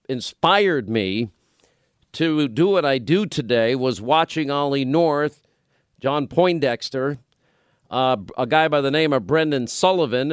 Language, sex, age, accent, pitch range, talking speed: English, male, 50-69, American, 125-155 Hz, 135 wpm